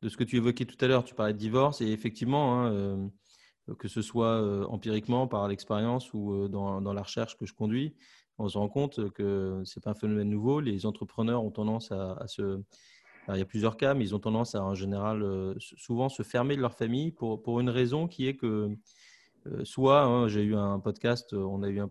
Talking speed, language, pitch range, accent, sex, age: 240 wpm, French, 105-135 Hz, French, male, 30-49